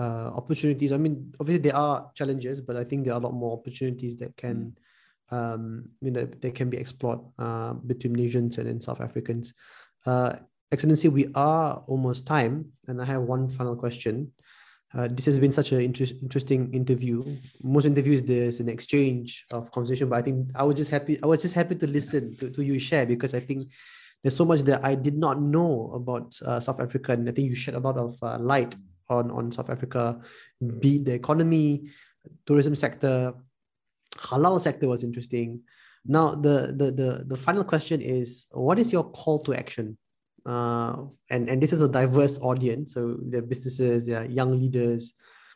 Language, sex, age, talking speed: English, male, 20-39, 185 wpm